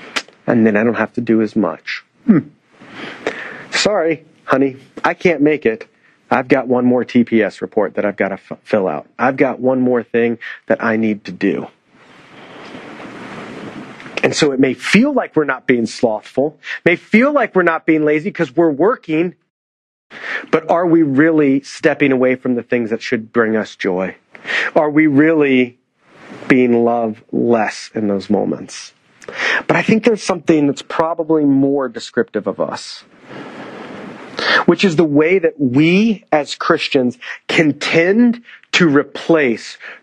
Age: 40-59